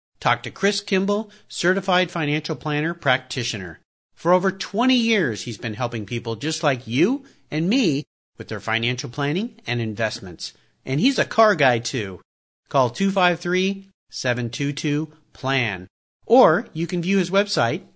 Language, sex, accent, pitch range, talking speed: English, male, American, 125-190 Hz, 135 wpm